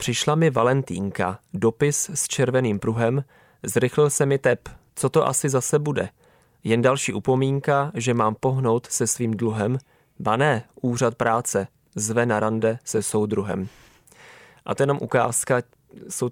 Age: 20-39